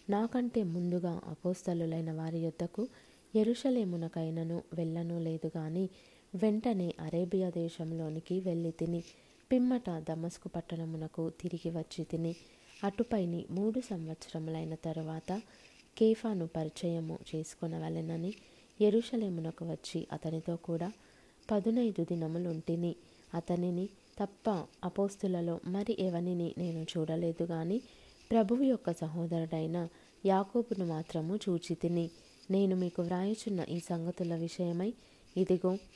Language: Telugu